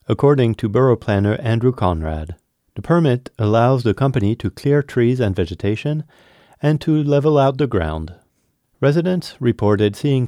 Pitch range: 95-135 Hz